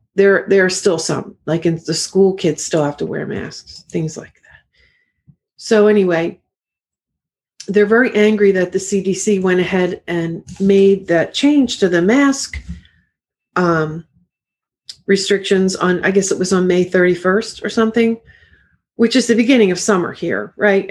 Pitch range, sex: 170-205 Hz, female